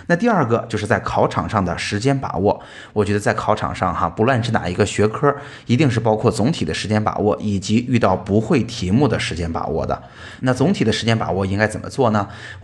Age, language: 20-39, Chinese